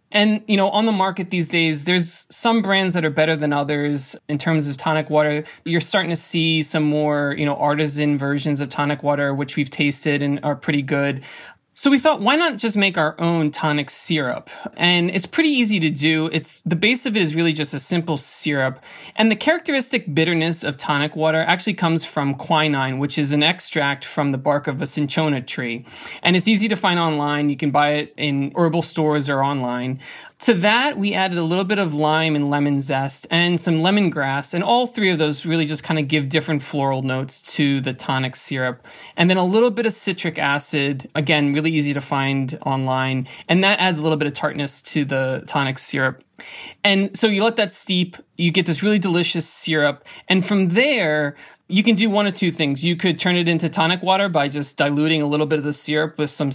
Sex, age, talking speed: male, 20-39, 220 wpm